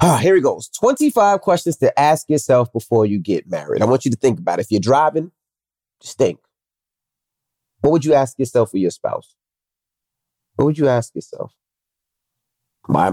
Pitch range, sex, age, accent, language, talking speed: 115-175 Hz, male, 30-49, American, English, 185 wpm